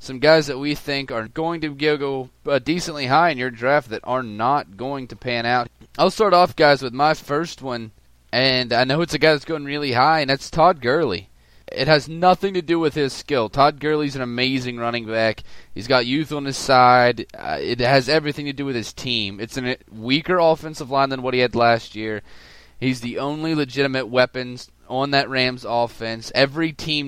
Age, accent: 20-39, American